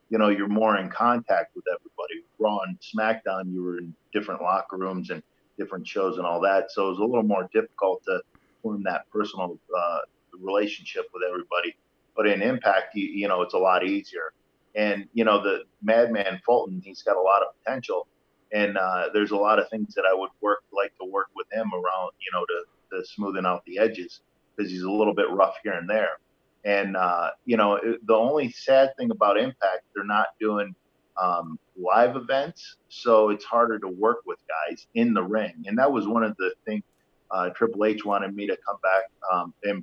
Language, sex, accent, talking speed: English, male, American, 205 wpm